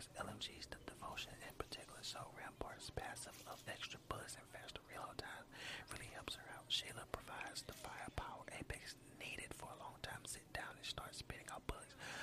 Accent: American